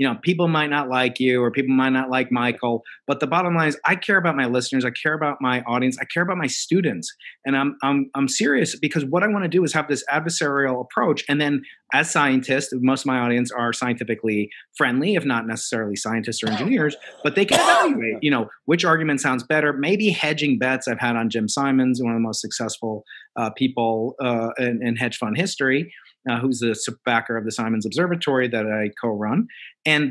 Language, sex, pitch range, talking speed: English, male, 120-155 Hz, 215 wpm